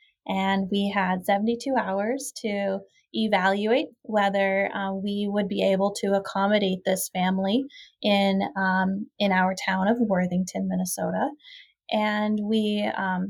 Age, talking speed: 20-39, 125 wpm